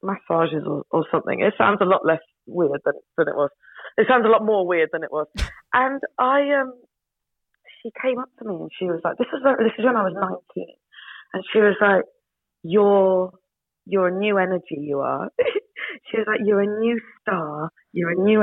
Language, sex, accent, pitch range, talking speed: Danish, female, British, 170-225 Hz, 210 wpm